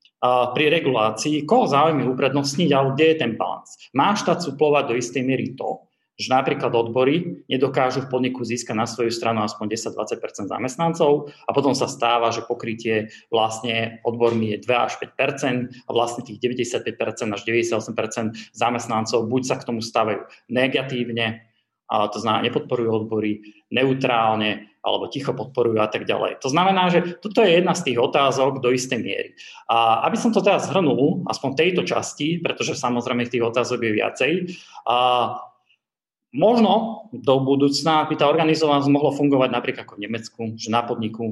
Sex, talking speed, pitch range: male, 160 wpm, 115-145 Hz